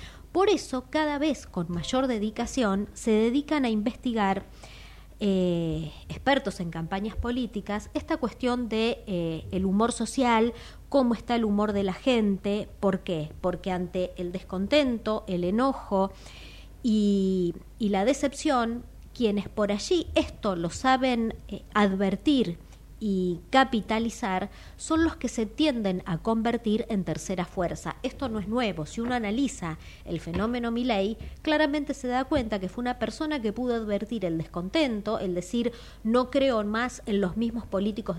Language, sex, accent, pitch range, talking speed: Italian, female, Argentinian, 190-245 Hz, 145 wpm